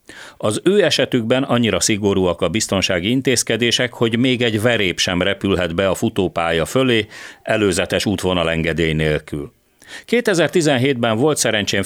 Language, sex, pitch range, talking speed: Hungarian, male, 90-120 Hz, 120 wpm